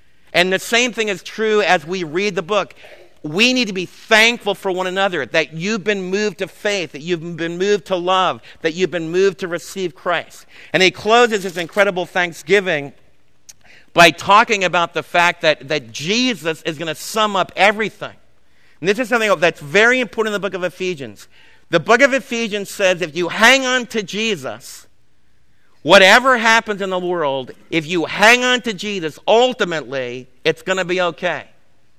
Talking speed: 185 wpm